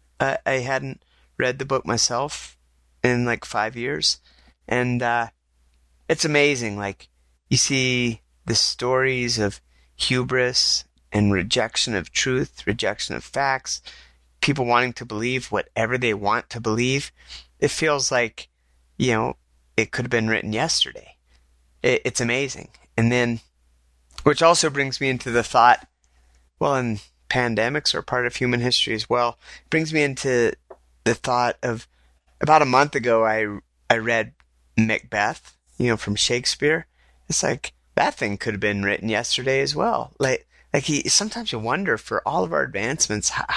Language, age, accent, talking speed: English, 30-49, American, 155 wpm